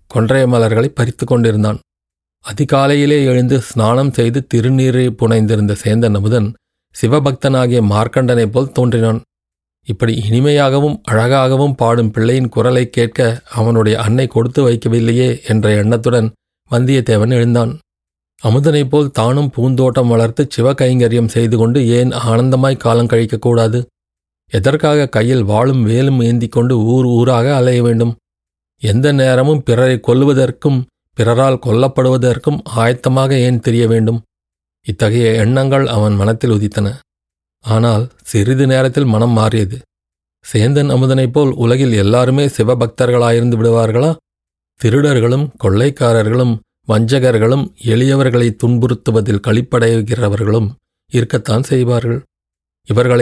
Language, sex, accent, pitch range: Tamil, male, native, 115-130 Hz